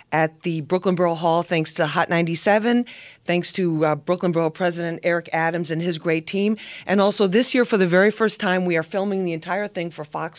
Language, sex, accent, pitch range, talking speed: English, female, American, 160-190 Hz, 220 wpm